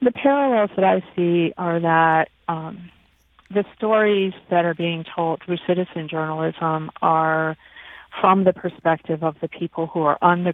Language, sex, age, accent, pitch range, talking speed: English, female, 40-59, American, 160-185 Hz, 160 wpm